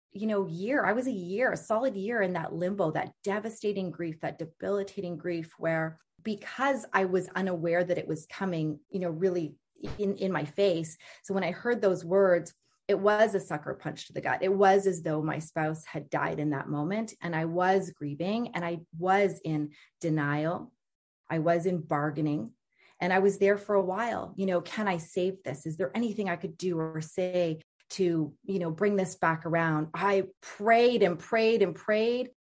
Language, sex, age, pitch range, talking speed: English, female, 30-49, 165-200 Hz, 200 wpm